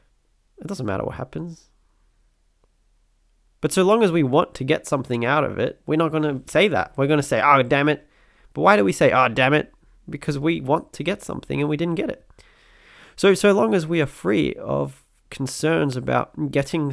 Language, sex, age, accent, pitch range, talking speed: English, male, 20-39, Australian, 130-160 Hz, 215 wpm